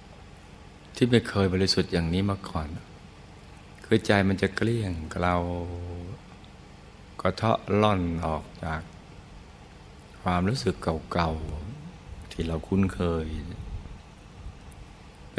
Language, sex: Thai, male